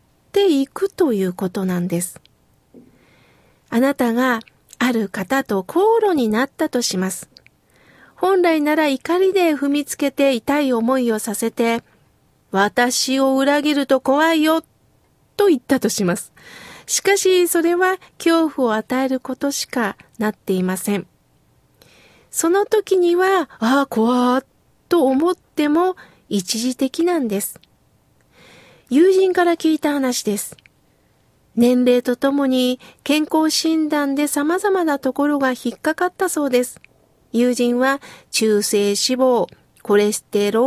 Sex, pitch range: female, 235-320 Hz